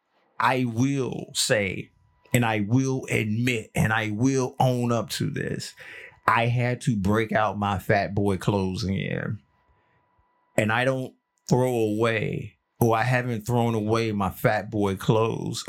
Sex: male